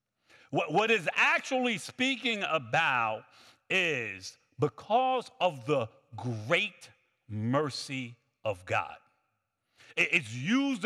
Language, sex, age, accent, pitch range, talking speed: English, male, 50-69, American, 140-210 Hz, 85 wpm